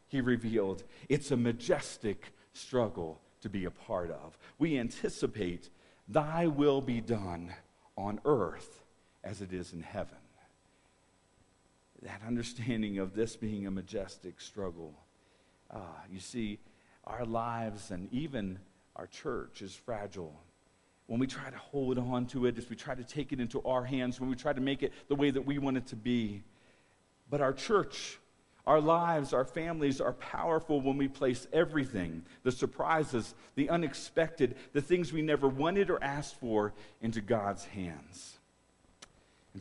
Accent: American